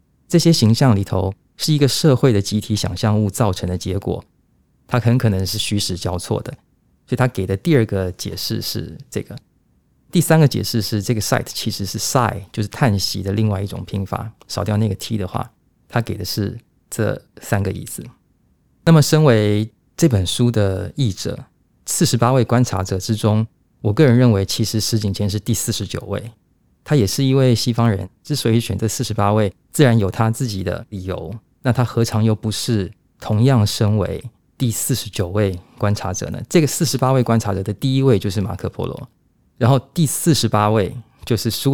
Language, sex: Chinese, male